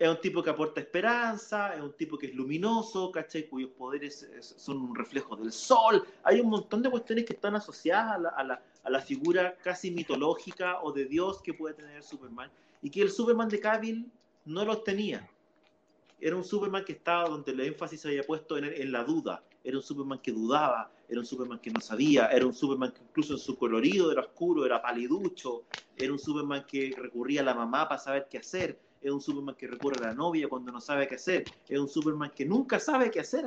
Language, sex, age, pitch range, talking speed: Spanish, male, 30-49, 140-215 Hz, 225 wpm